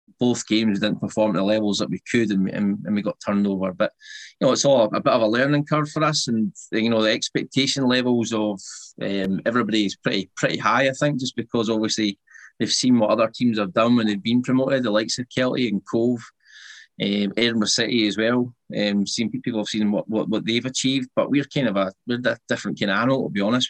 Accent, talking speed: British, 240 wpm